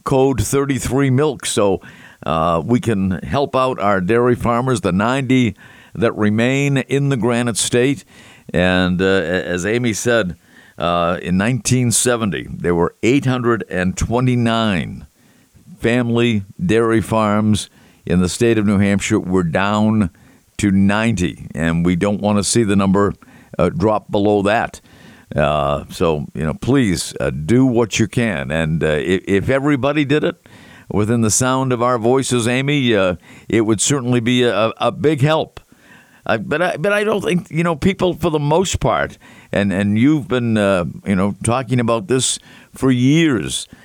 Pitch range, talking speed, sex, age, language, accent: 100-130 Hz, 155 wpm, male, 50-69, English, American